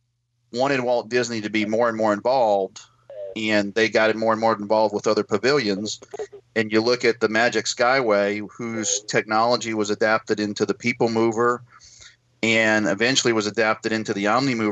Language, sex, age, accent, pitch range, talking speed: English, male, 40-59, American, 110-120 Hz, 170 wpm